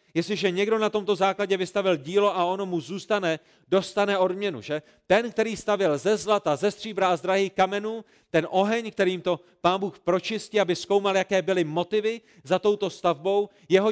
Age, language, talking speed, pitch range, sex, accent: 40-59, Czech, 170 wpm, 170-205 Hz, male, native